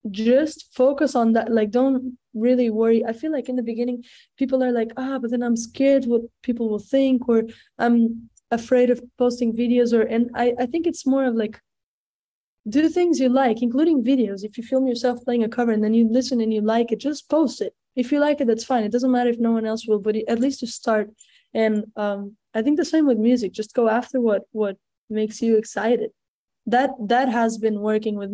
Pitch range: 215-250 Hz